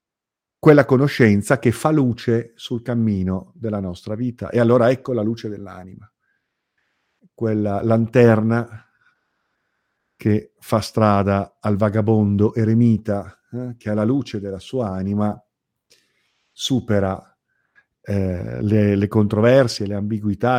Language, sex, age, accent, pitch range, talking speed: Italian, male, 50-69, native, 100-120 Hz, 110 wpm